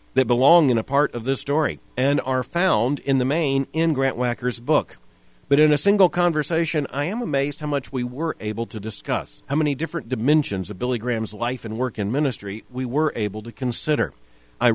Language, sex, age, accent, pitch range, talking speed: English, male, 50-69, American, 115-150 Hz, 210 wpm